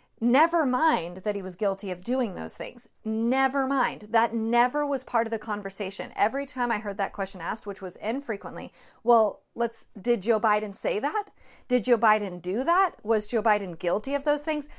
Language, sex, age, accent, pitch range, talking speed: English, female, 40-59, American, 210-265 Hz, 195 wpm